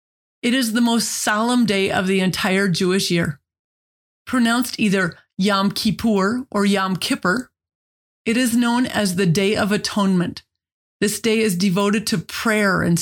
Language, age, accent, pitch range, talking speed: English, 30-49, American, 185-225 Hz, 150 wpm